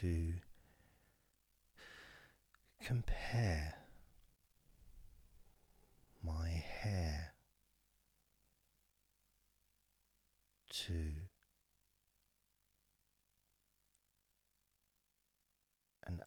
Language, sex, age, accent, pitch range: English, male, 50-69, British, 80-95 Hz